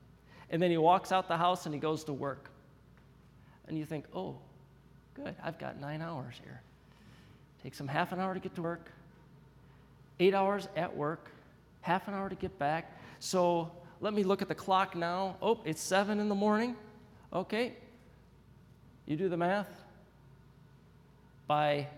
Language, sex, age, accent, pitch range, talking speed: English, male, 40-59, American, 135-180 Hz, 165 wpm